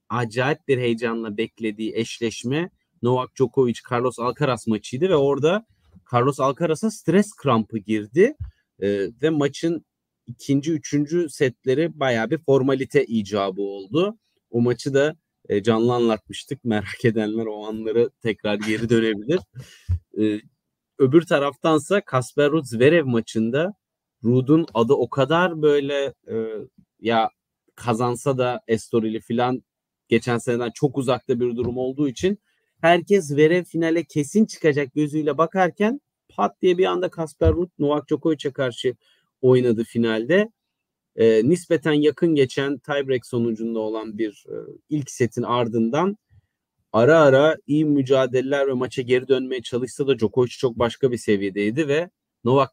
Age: 30-49